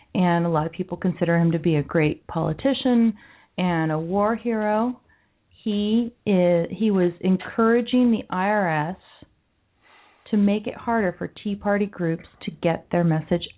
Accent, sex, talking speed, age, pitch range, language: American, female, 155 wpm, 40-59, 160-200 Hz, English